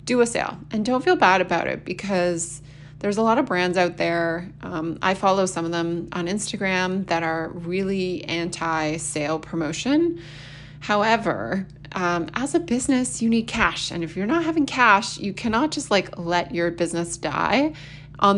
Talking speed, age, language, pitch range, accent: 175 wpm, 20-39, English, 160-195 Hz, American